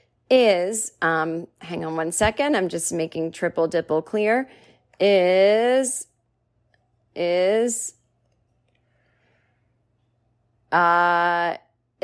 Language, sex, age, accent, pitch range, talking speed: English, female, 30-49, American, 165-210 Hz, 75 wpm